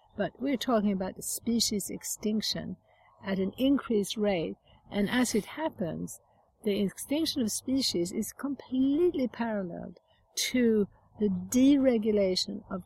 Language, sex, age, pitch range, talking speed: English, female, 60-79, 190-225 Hz, 120 wpm